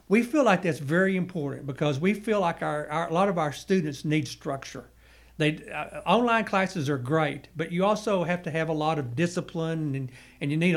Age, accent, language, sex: 60-79, American, English, male